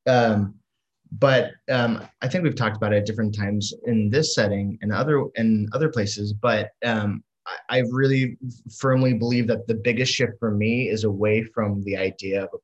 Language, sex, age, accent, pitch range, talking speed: English, male, 20-39, American, 105-120 Hz, 190 wpm